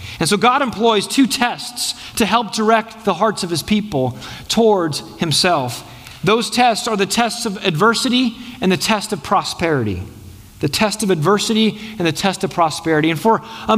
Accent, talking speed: American, 175 wpm